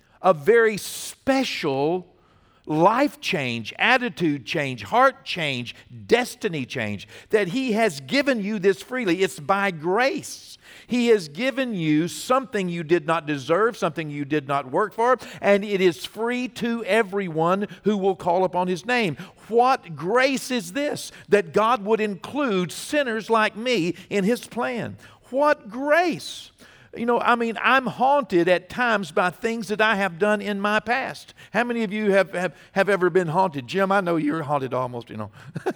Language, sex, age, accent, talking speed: English, male, 50-69, American, 165 wpm